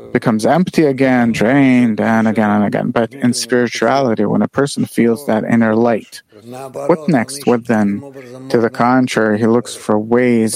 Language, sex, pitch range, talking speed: English, male, 110-130 Hz, 165 wpm